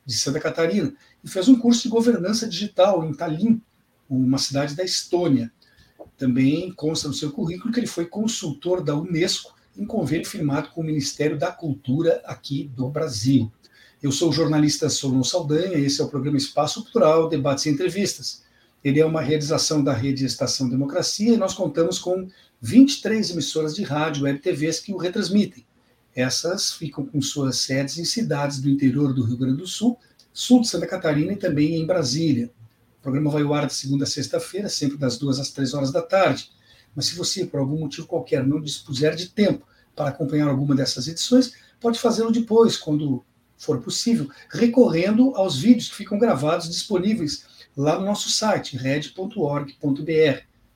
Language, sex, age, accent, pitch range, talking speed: Portuguese, male, 60-79, Brazilian, 140-185 Hz, 175 wpm